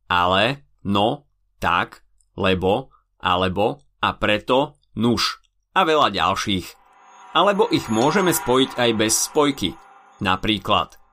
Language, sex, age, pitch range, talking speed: Slovak, male, 30-49, 95-135 Hz, 100 wpm